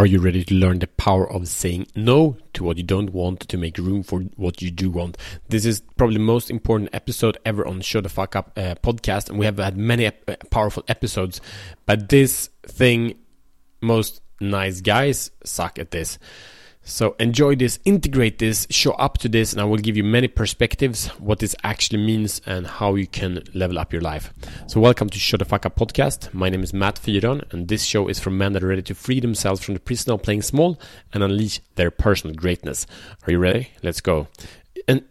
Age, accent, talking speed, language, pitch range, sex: 30-49, Norwegian, 210 wpm, Swedish, 90-115 Hz, male